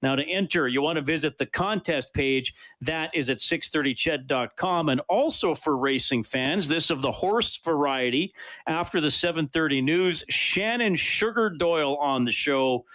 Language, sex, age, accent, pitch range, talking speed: English, male, 40-59, American, 125-165 Hz, 160 wpm